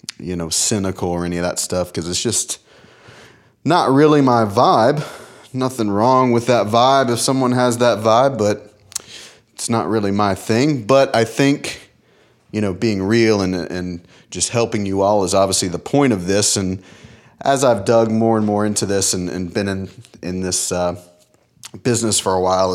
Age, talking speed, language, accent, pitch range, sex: 30-49, 185 wpm, English, American, 90-115 Hz, male